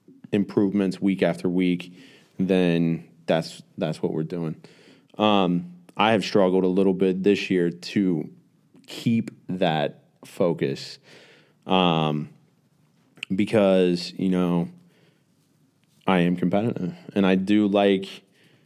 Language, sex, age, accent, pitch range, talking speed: English, male, 20-39, American, 90-100 Hz, 110 wpm